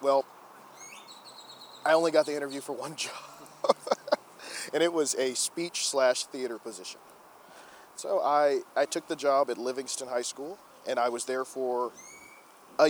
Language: English